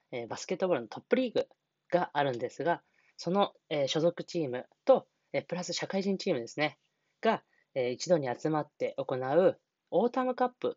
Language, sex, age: Japanese, female, 20-39